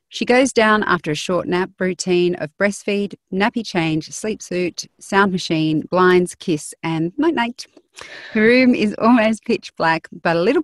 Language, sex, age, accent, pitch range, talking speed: English, female, 30-49, Australian, 160-210 Hz, 165 wpm